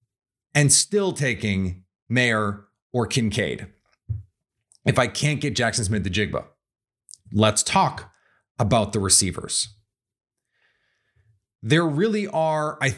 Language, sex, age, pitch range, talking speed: English, male, 30-49, 110-145 Hz, 105 wpm